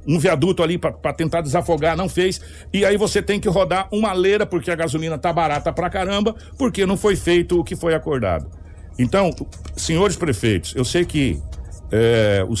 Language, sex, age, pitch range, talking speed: Portuguese, male, 60-79, 120-180 Hz, 185 wpm